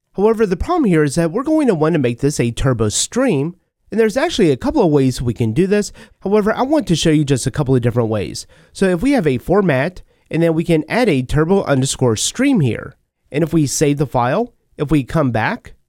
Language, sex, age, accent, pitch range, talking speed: English, male, 30-49, American, 130-200 Hz, 245 wpm